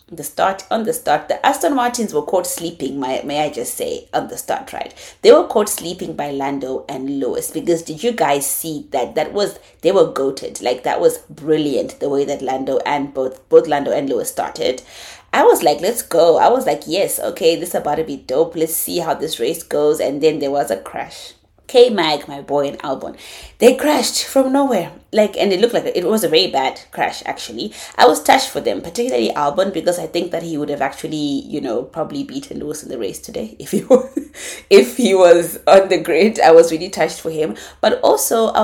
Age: 30-49